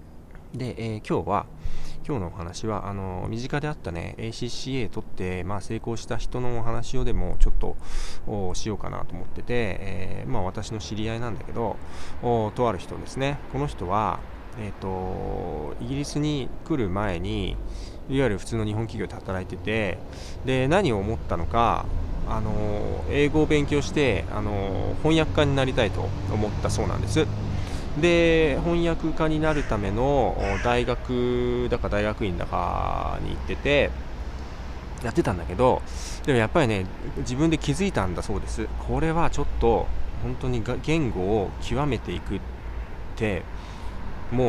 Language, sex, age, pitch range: Japanese, male, 20-39, 90-125 Hz